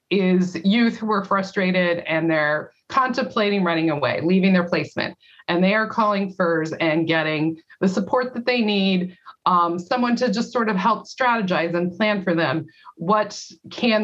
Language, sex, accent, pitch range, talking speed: English, female, American, 165-205 Hz, 165 wpm